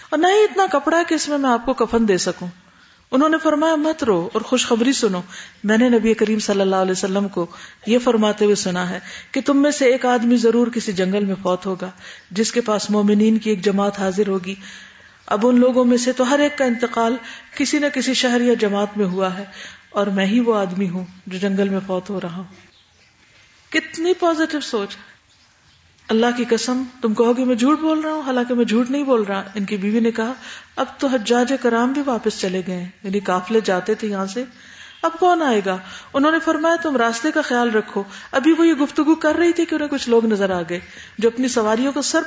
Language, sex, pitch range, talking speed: Urdu, female, 200-270 Hz, 225 wpm